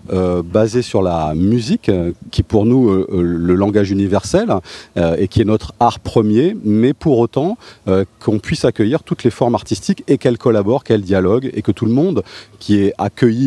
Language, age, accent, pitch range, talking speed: French, 40-59, French, 95-120 Hz, 200 wpm